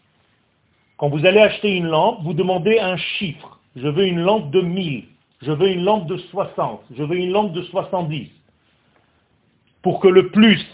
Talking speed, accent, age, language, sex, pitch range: 180 wpm, French, 40-59, French, male, 170-225 Hz